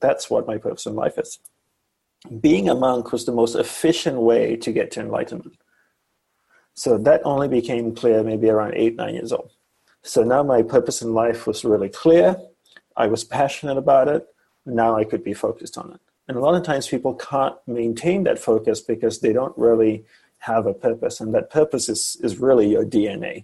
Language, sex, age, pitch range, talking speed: English, male, 30-49, 115-145 Hz, 195 wpm